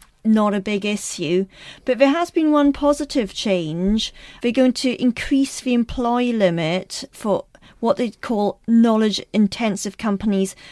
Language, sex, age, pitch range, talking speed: English, female, 40-59, 190-225 Hz, 135 wpm